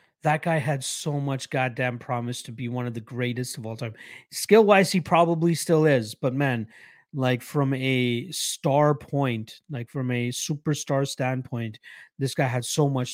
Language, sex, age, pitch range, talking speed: English, male, 30-49, 120-150 Hz, 175 wpm